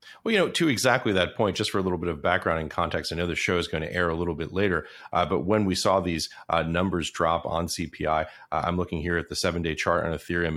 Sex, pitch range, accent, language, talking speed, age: male, 80-90 Hz, American, English, 285 wpm, 40-59